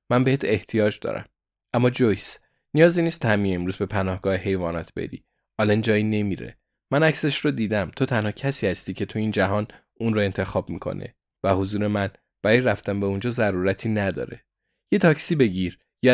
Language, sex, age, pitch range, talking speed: Persian, male, 20-39, 95-120 Hz, 170 wpm